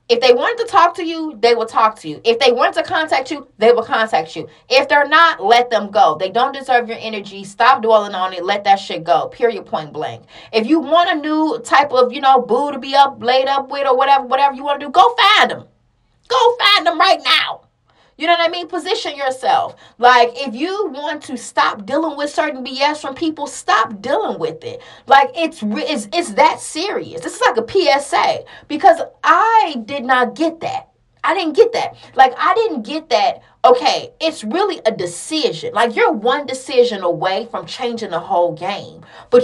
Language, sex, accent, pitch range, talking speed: English, female, American, 235-320 Hz, 215 wpm